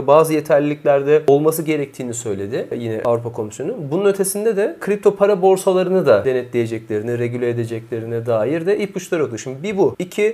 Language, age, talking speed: Turkish, 40-59, 150 wpm